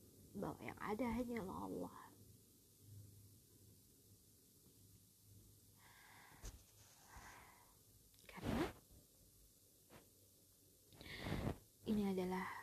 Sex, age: female, 20-39